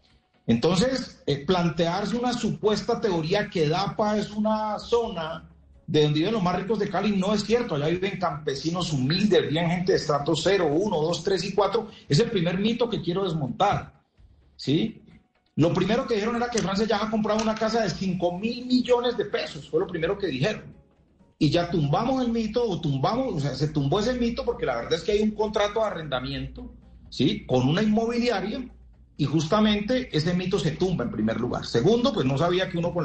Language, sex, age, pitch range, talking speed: Spanish, male, 40-59, 150-220 Hz, 200 wpm